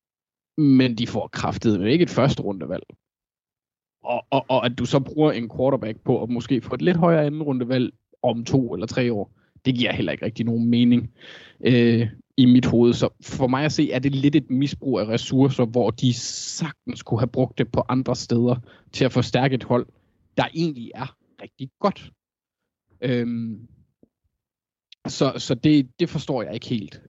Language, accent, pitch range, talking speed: Danish, native, 120-140 Hz, 185 wpm